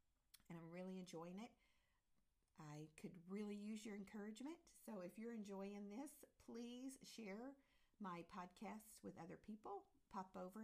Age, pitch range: 50-69, 170-215 Hz